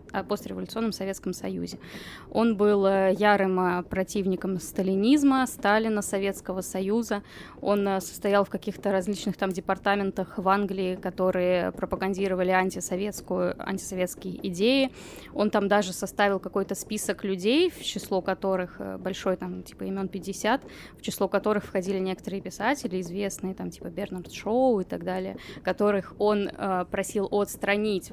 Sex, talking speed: female, 125 wpm